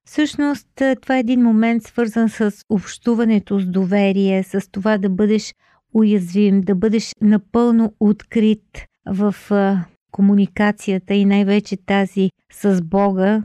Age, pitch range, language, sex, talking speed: 50-69, 195-225 Hz, Bulgarian, female, 115 wpm